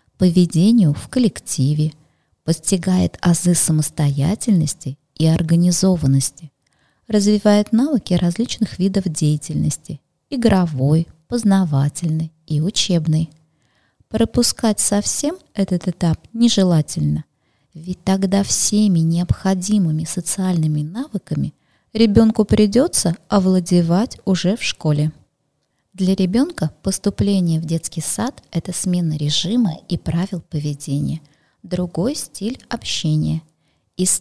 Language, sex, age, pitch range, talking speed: Russian, female, 20-39, 155-200 Hz, 90 wpm